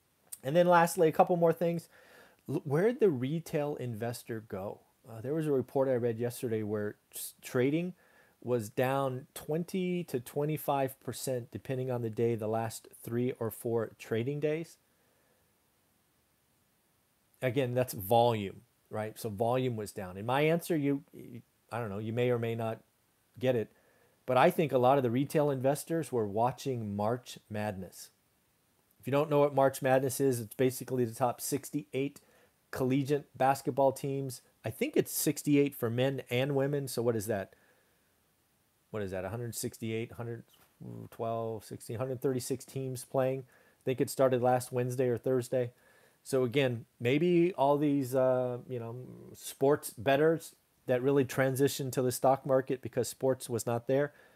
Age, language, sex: 40-59, English, male